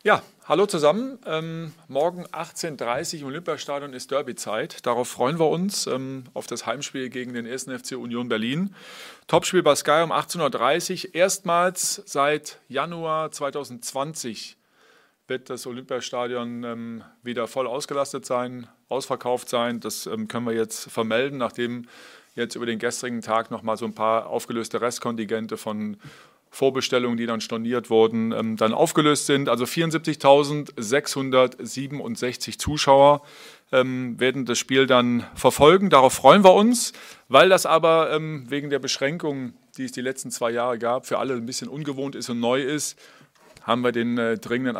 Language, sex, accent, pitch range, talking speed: German, male, German, 120-145 Hz, 145 wpm